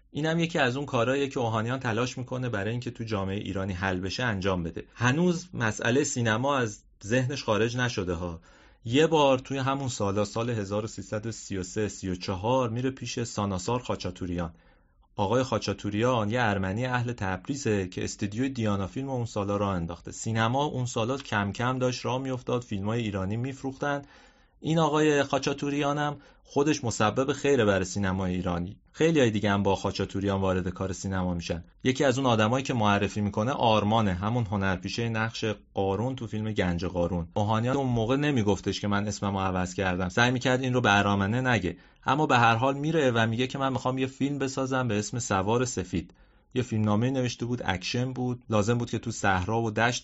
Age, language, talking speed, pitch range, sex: 30-49, Persian, 175 wpm, 100-130 Hz, male